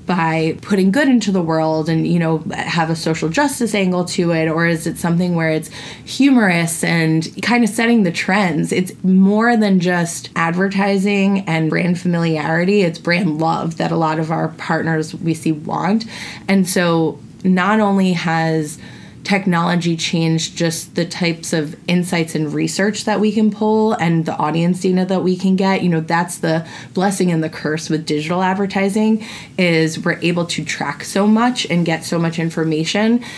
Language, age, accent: English, 20-39, American